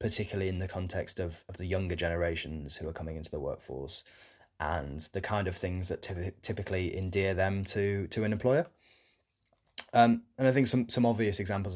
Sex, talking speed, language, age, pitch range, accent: male, 190 wpm, English, 20-39, 90-105 Hz, British